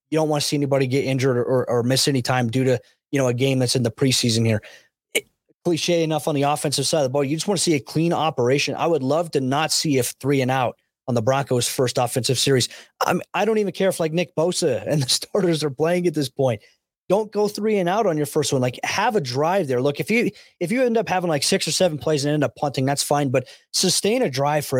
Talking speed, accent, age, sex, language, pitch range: 270 wpm, American, 20-39, male, English, 135-160 Hz